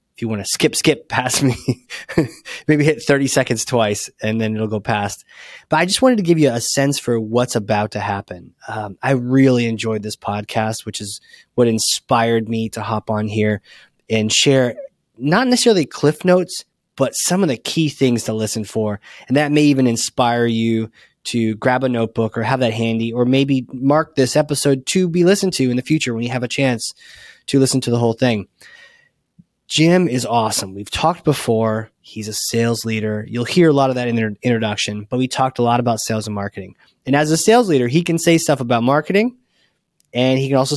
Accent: American